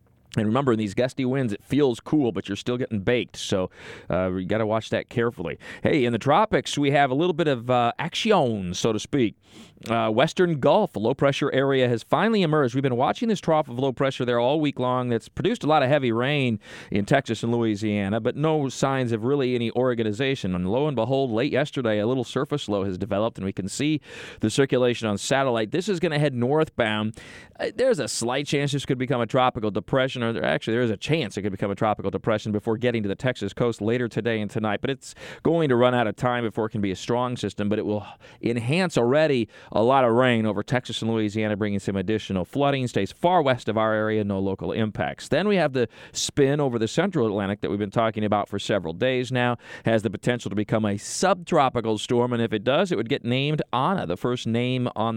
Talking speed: 230 wpm